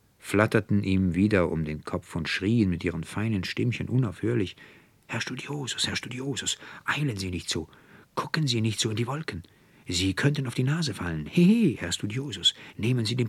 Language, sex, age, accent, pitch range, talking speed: German, male, 60-79, German, 90-120 Hz, 185 wpm